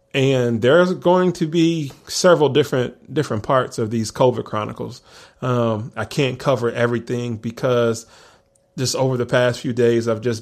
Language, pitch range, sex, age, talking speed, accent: English, 110-130 Hz, male, 30-49, 155 wpm, American